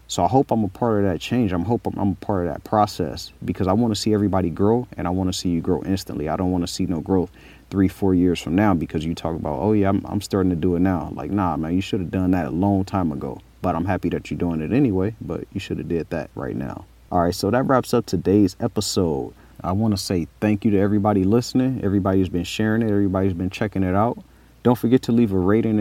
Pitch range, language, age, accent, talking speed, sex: 90-110 Hz, English, 30-49, American, 275 wpm, male